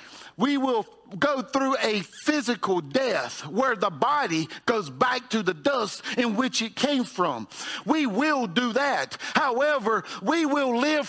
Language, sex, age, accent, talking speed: English, male, 50-69, American, 150 wpm